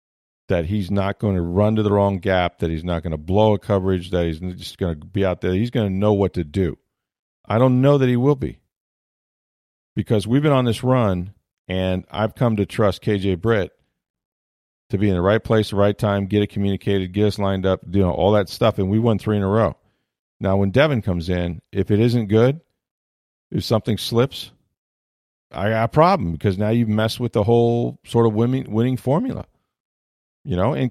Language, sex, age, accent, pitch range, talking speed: English, male, 50-69, American, 90-115 Hz, 215 wpm